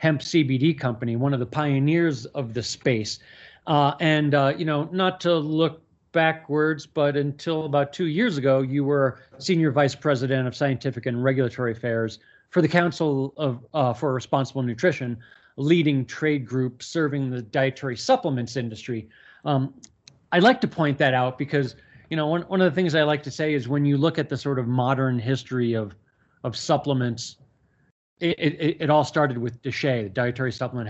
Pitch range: 125-165 Hz